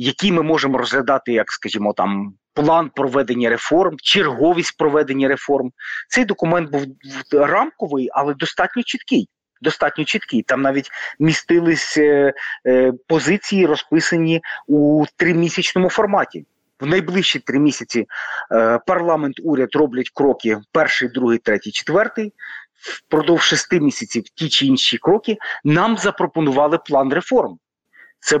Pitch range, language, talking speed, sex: 135-185 Hz, Ukrainian, 115 wpm, male